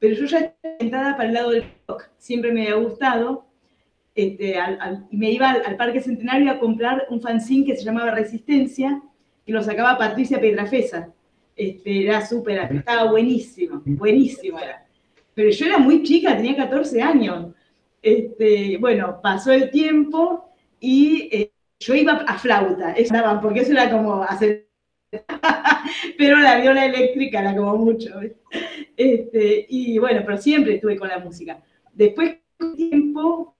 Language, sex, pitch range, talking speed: Spanish, female, 215-275 Hz, 155 wpm